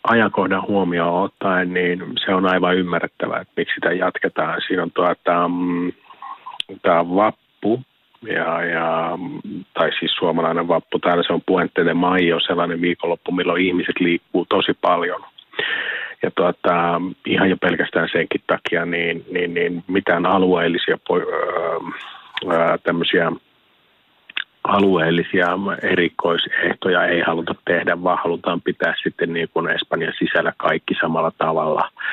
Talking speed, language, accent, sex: 120 wpm, Finnish, native, male